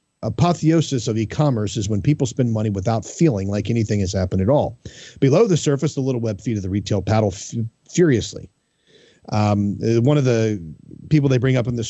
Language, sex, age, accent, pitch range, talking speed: English, male, 40-59, American, 110-145 Hz, 190 wpm